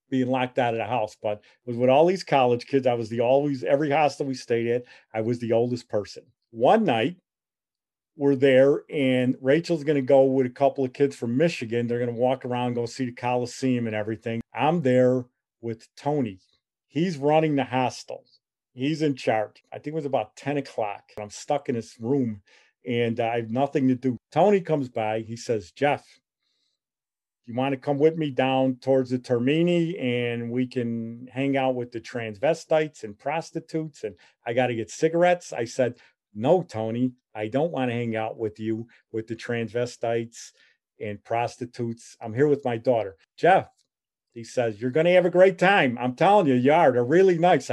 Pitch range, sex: 120-145 Hz, male